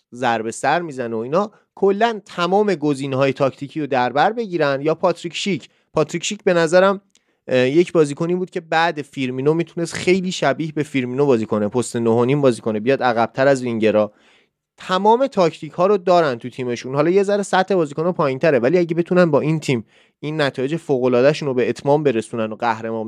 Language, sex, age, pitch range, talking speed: Persian, male, 30-49, 125-170 Hz, 170 wpm